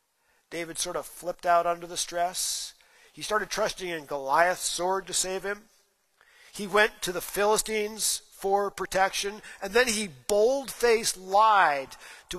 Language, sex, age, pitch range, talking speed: English, male, 50-69, 165-210 Hz, 145 wpm